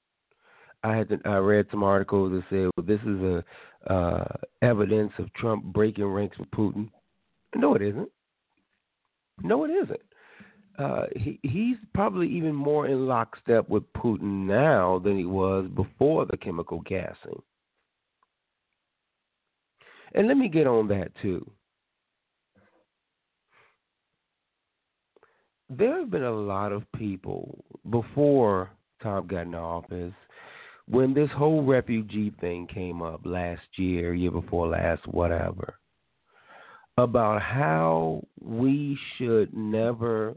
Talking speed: 120 wpm